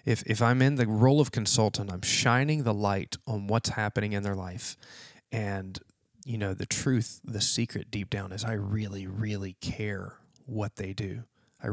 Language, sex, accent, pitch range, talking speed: English, male, American, 105-130 Hz, 185 wpm